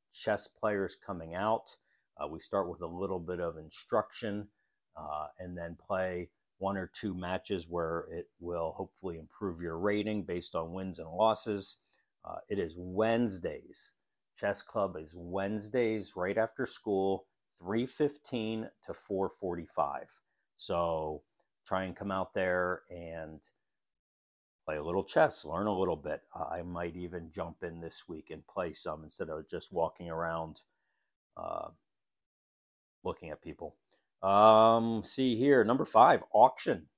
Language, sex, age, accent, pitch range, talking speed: English, male, 50-69, American, 85-110 Hz, 145 wpm